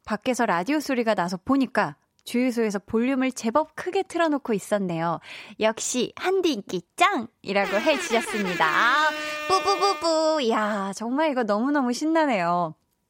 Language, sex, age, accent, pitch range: Korean, female, 20-39, native, 190-270 Hz